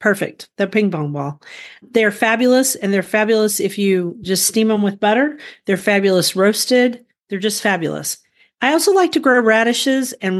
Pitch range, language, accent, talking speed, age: 195-240 Hz, English, American, 175 wpm, 40-59